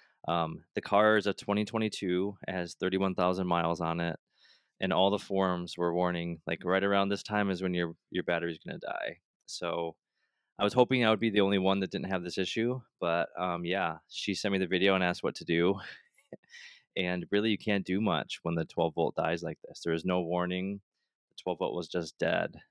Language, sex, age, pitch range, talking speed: English, male, 20-39, 90-105 Hz, 215 wpm